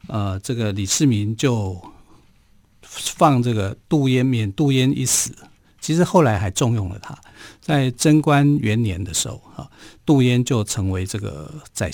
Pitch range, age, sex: 105-135 Hz, 50-69, male